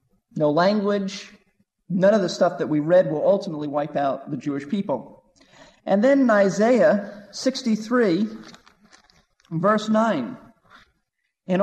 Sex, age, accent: male, 40-59, American